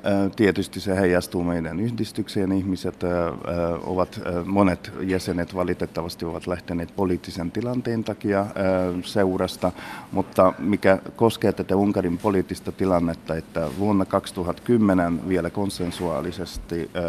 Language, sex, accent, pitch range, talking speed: Finnish, male, native, 85-95 Hz, 100 wpm